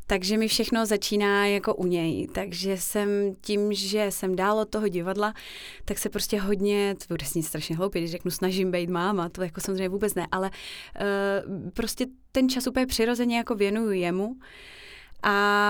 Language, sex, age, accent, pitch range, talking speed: Czech, female, 20-39, native, 195-225 Hz, 175 wpm